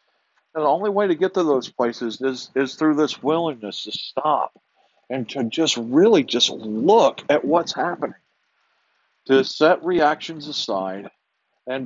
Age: 50-69